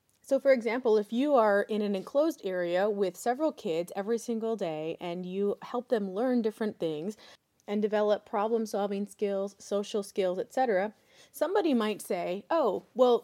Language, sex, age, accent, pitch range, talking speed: English, female, 30-49, American, 195-250 Hz, 160 wpm